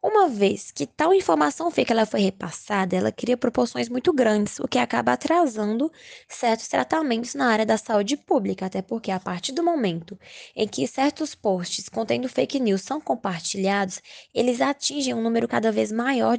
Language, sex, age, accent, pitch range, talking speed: Portuguese, female, 10-29, Brazilian, 200-275 Hz, 170 wpm